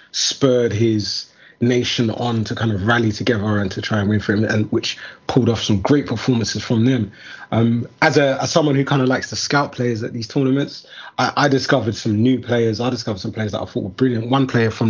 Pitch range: 105-130 Hz